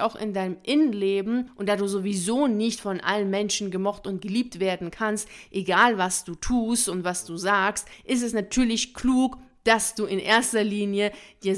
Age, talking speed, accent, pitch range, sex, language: 30-49, 180 wpm, German, 190-225 Hz, female, German